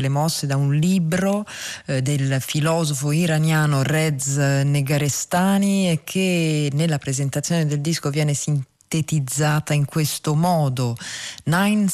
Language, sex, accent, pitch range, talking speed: Italian, female, native, 135-170 Hz, 115 wpm